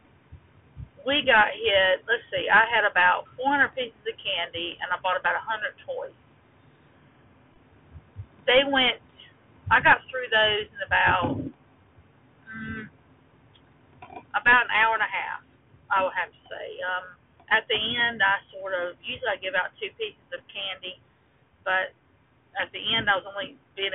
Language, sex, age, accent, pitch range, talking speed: English, female, 40-59, American, 190-260 Hz, 155 wpm